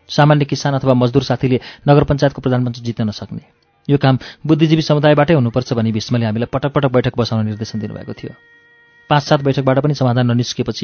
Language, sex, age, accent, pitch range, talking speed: English, male, 30-49, Indian, 120-150 Hz, 100 wpm